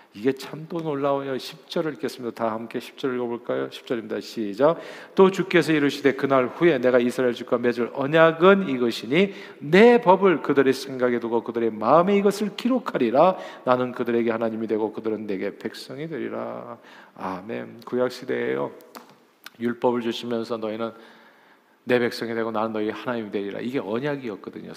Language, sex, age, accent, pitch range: Korean, male, 40-59, native, 115-145 Hz